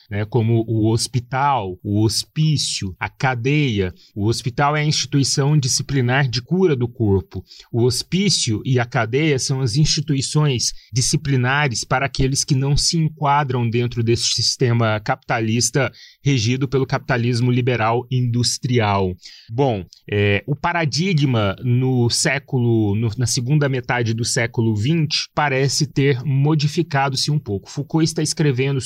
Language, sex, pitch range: Portuguese, male, 120-145 Hz